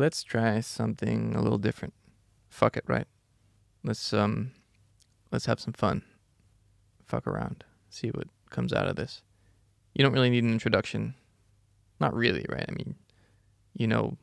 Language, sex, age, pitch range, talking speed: English, male, 20-39, 100-115 Hz, 150 wpm